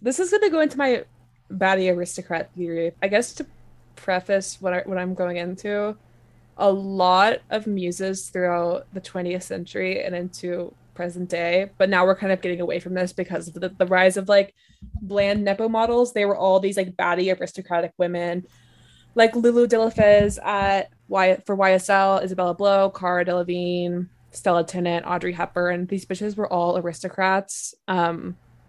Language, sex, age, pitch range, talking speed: English, female, 20-39, 175-195 Hz, 165 wpm